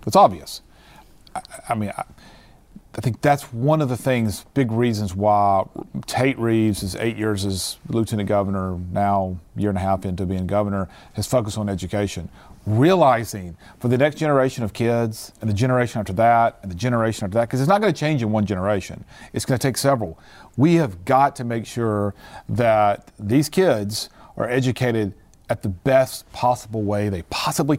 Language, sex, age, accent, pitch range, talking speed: English, male, 40-59, American, 105-135 Hz, 180 wpm